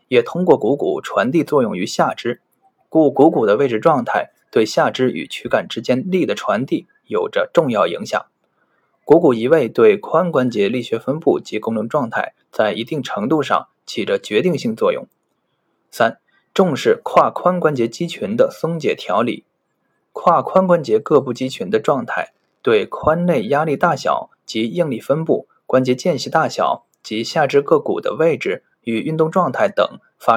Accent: native